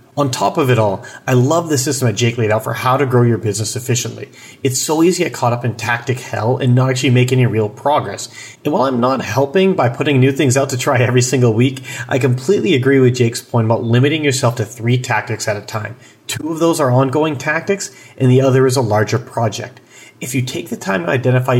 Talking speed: 240 wpm